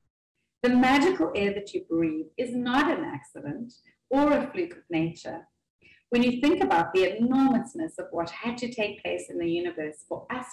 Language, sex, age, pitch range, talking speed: English, female, 30-49, 160-240 Hz, 180 wpm